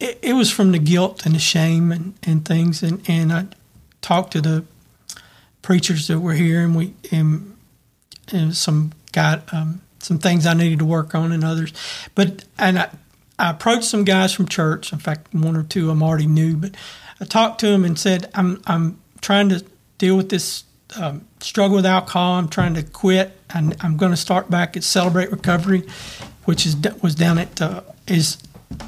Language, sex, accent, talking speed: English, male, American, 195 wpm